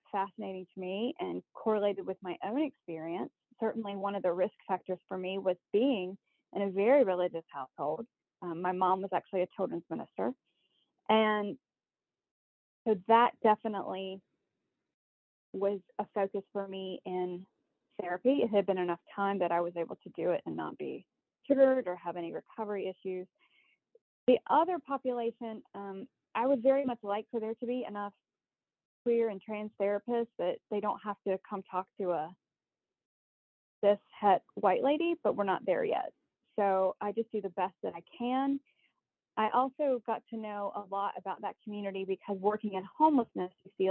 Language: English